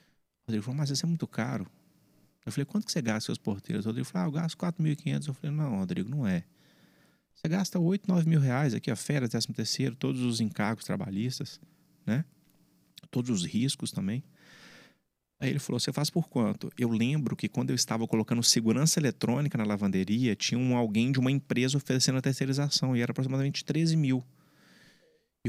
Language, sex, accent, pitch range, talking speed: English, male, Brazilian, 110-165 Hz, 185 wpm